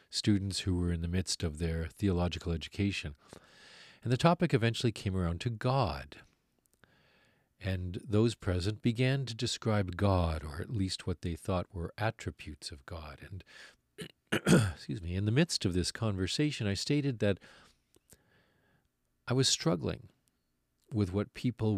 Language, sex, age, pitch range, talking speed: English, male, 40-59, 85-105 Hz, 145 wpm